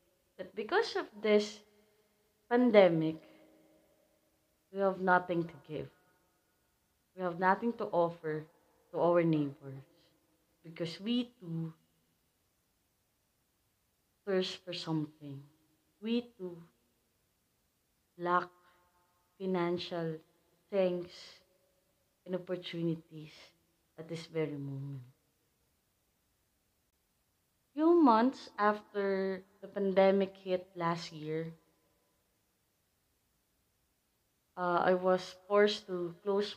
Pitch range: 160-200 Hz